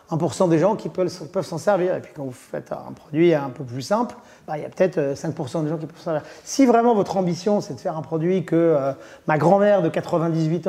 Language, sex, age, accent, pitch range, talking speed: French, male, 30-49, French, 150-190 Hz, 260 wpm